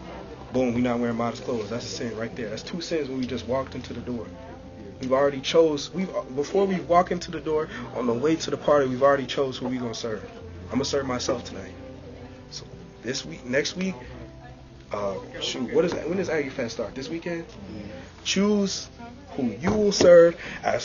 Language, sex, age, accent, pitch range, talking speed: English, male, 20-39, American, 115-160 Hz, 210 wpm